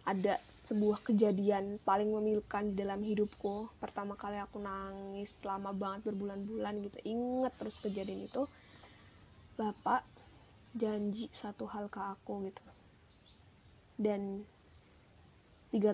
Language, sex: Indonesian, female